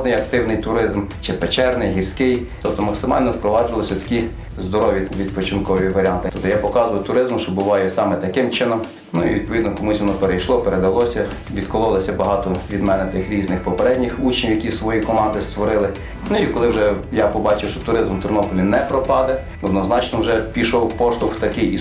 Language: Ukrainian